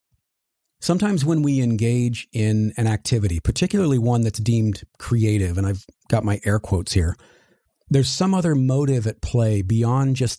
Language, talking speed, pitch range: English, 155 wpm, 110-140 Hz